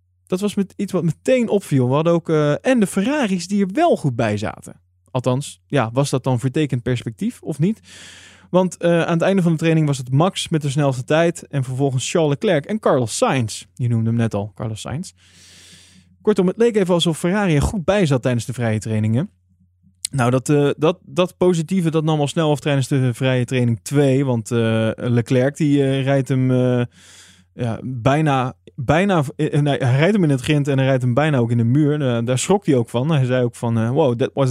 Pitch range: 120-155 Hz